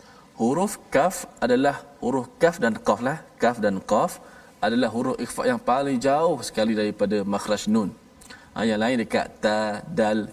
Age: 20-39